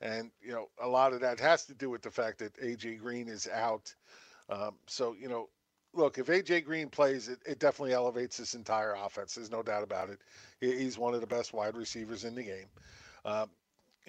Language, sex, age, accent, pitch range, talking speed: English, male, 50-69, American, 115-135 Hz, 215 wpm